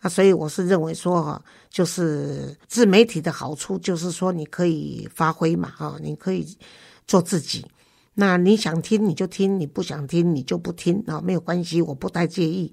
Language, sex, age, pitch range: Chinese, female, 50-69, 155-185 Hz